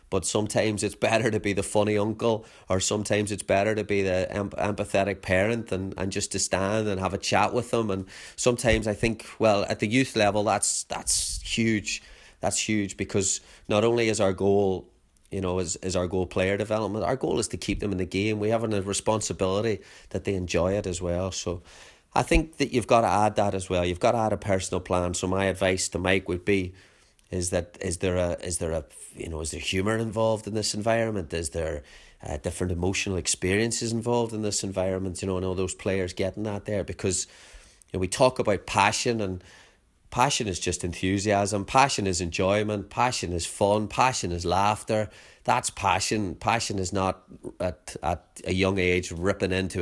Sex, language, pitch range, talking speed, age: male, English, 95-110 Hz, 205 wpm, 30-49